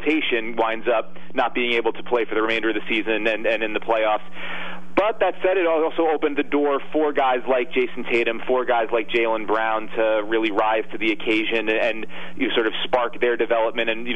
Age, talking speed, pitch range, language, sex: 30-49, 220 wpm, 110-130 Hz, English, male